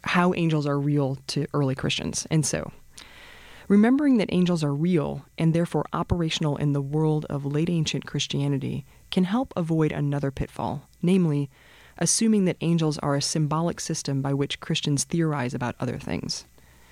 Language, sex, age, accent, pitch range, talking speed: English, female, 20-39, American, 145-185 Hz, 155 wpm